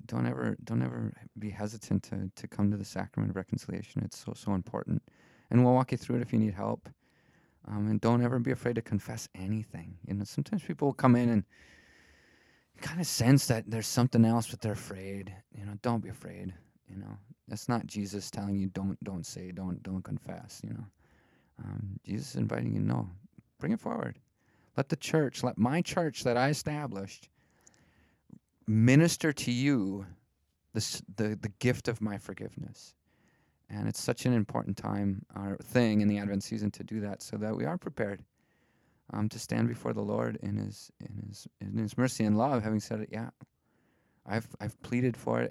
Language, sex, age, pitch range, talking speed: English, male, 30-49, 100-125 Hz, 195 wpm